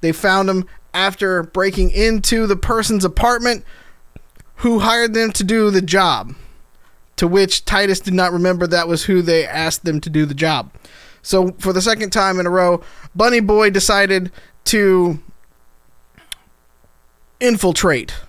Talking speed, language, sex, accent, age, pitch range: 150 wpm, English, male, American, 20-39, 160-215 Hz